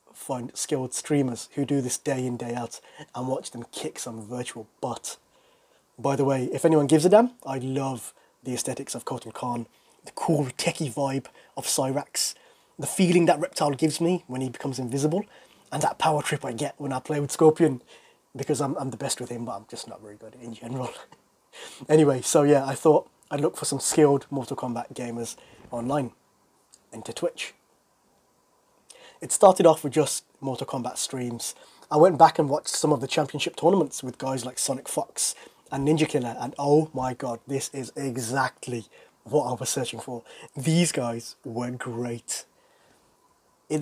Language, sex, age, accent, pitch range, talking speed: English, male, 20-39, British, 125-160 Hz, 180 wpm